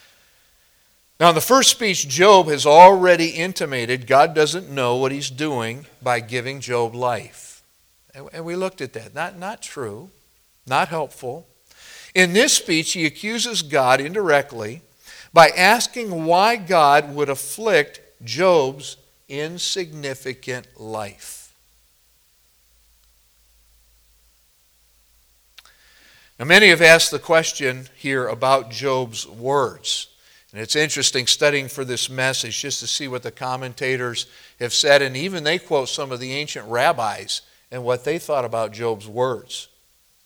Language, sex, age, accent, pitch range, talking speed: English, male, 50-69, American, 120-170 Hz, 130 wpm